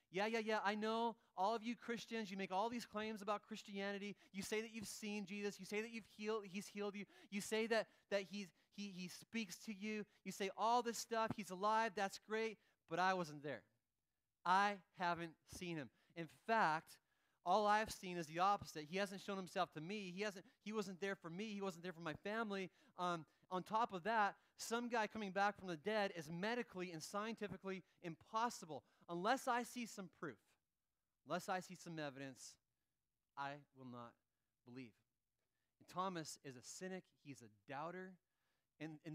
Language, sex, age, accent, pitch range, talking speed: English, male, 30-49, American, 145-205 Hz, 190 wpm